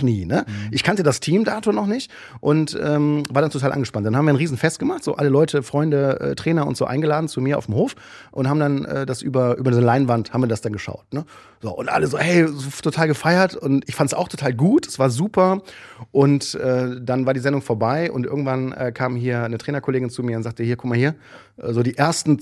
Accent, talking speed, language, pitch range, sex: German, 240 wpm, German, 120-150 Hz, male